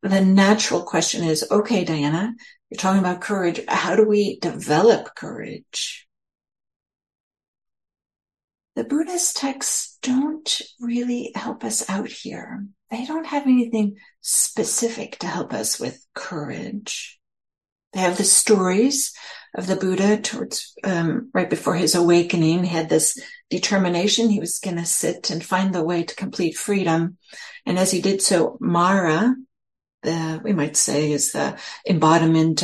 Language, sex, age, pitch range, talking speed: English, female, 60-79, 155-215 Hz, 140 wpm